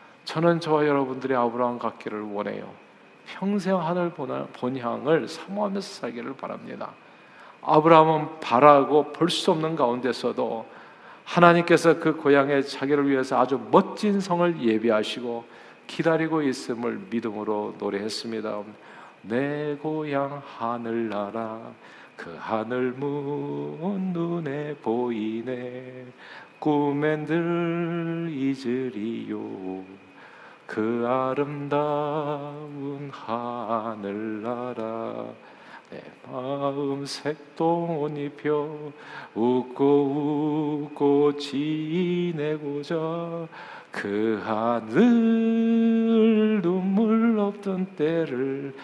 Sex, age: male, 40-59